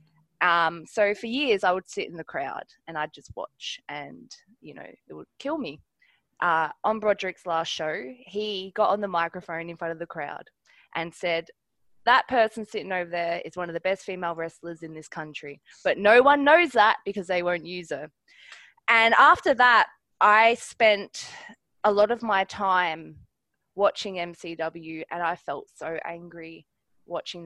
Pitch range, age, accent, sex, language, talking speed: 165-205 Hz, 20-39, Australian, female, English, 175 wpm